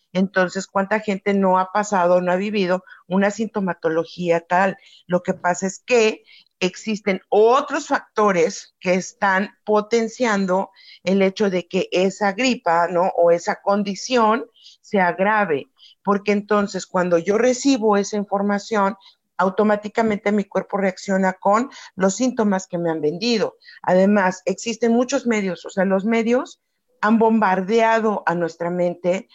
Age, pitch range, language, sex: 50-69, 185-230 Hz, Spanish, female